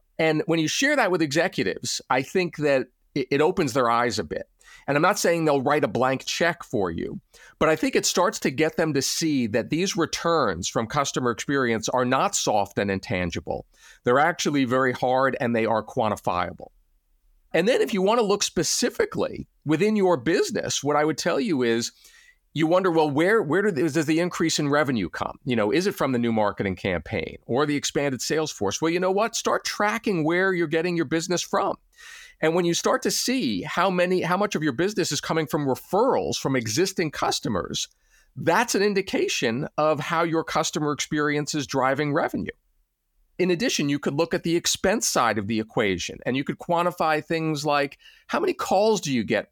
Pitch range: 135-180 Hz